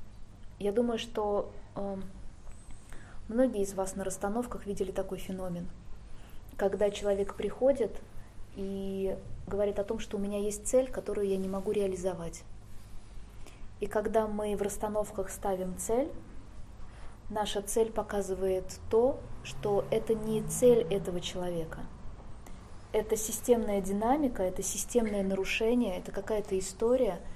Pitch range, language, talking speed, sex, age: 165-215 Hz, Russian, 120 wpm, female, 20-39